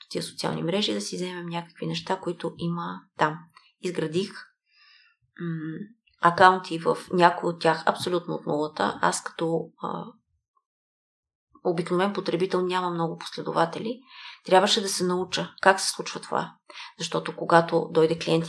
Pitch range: 165-210 Hz